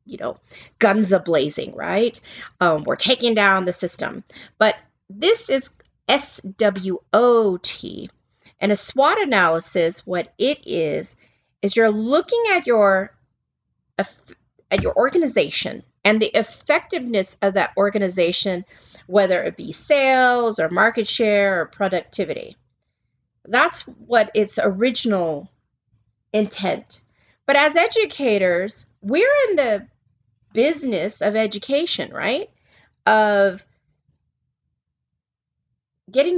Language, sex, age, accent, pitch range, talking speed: English, female, 30-49, American, 180-255 Hz, 105 wpm